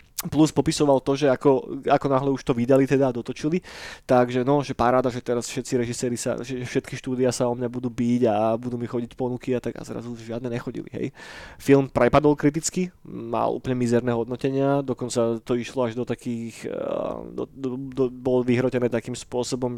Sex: male